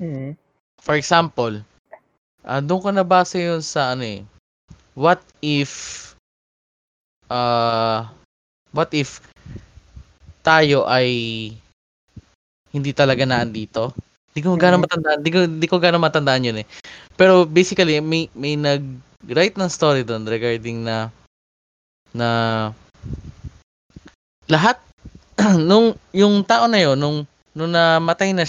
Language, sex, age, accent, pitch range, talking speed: Filipino, male, 20-39, native, 115-170 Hz, 110 wpm